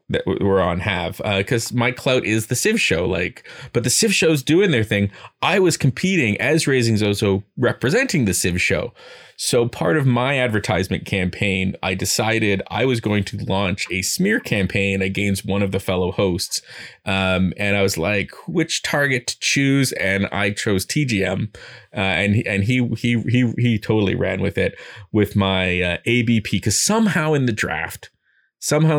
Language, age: English, 20-39